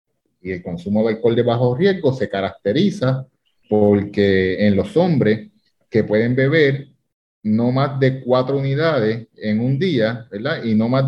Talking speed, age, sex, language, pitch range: 155 wpm, 30-49, male, Spanish, 105-135 Hz